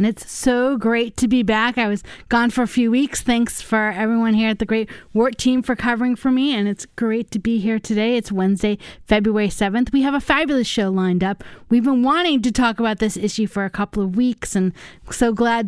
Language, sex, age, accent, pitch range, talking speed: English, female, 30-49, American, 210-265 Hz, 235 wpm